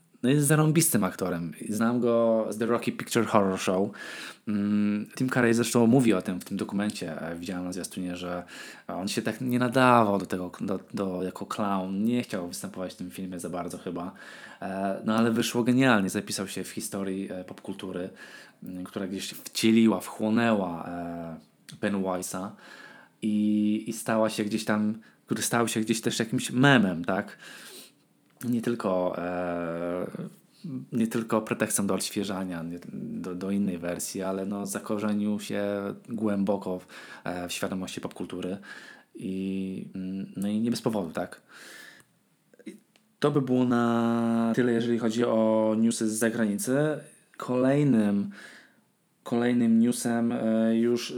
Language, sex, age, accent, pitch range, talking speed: Polish, male, 20-39, native, 95-120 Hz, 130 wpm